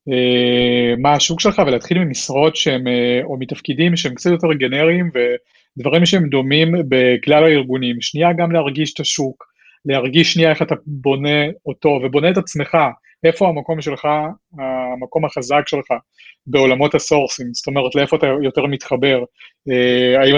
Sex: male